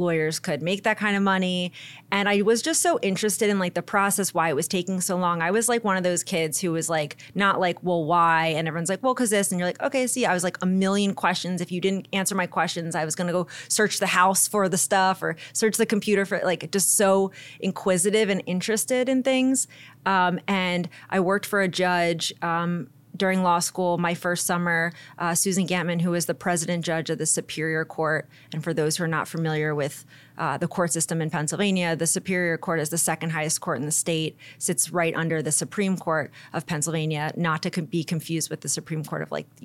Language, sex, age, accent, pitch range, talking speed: English, female, 30-49, American, 160-190 Hz, 230 wpm